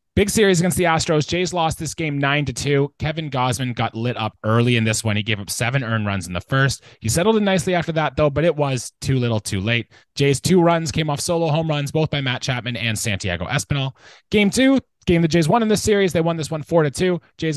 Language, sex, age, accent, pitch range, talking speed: English, male, 20-39, American, 130-175 Hz, 260 wpm